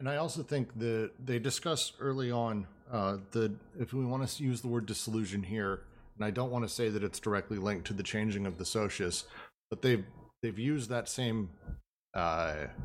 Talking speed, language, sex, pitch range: 200 wpm, English, male, 95-120 Hz